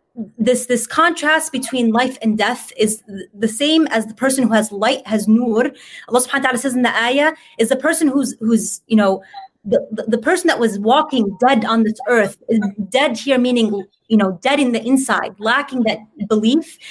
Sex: female